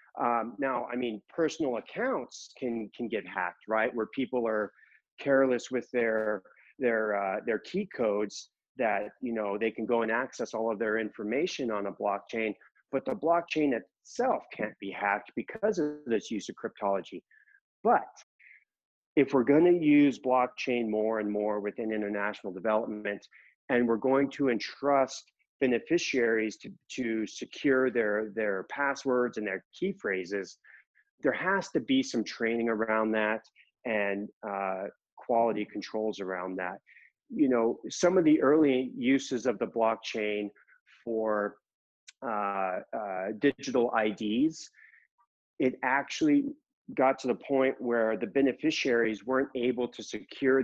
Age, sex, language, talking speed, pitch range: 40-59, male, English, 145 wpm, 105-135 Hz